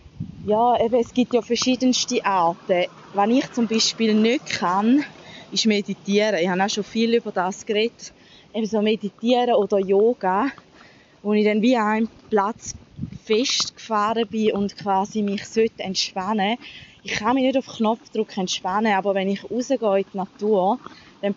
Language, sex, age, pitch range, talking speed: German, female, 20-39, 200-235 Hz, 155 wpm